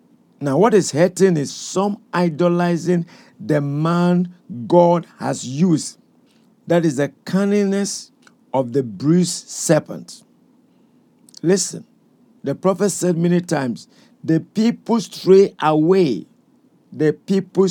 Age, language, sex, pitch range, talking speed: 50-69, English, male, 155-195 Hz, 110 wpm